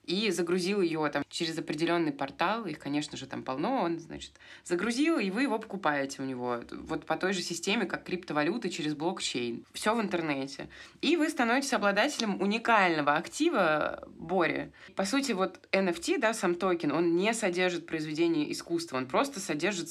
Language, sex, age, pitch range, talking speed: Russian, female, 20-39, 155-200 Hz, 165 wpm